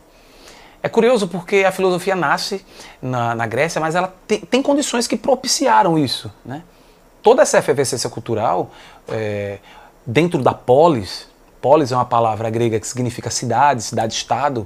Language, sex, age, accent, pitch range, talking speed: Portuguese, male, 30-49, Brazilian, 120-170 Hz, 140 wpm